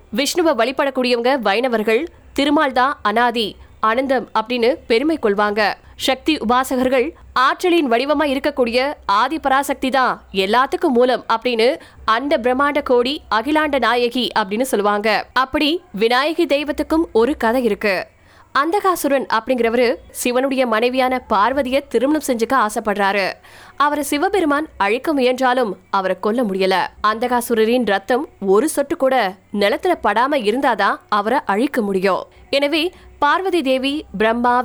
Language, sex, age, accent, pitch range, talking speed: Tamil, female, 20-39, native, 220-280 Hz, 105 wpm